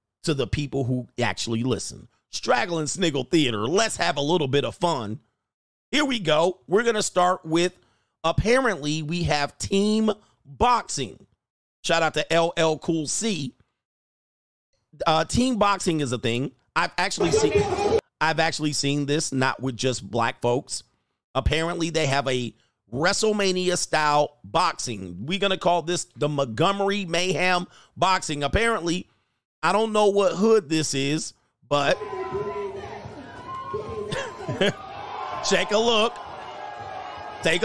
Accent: American